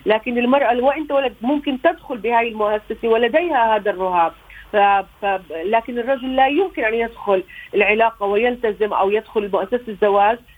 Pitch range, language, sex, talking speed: 195-245 Hz, Arabic, female, 145 wpm